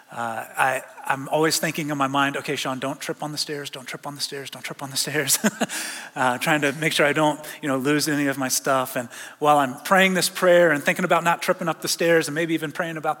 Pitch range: 145-180 Hz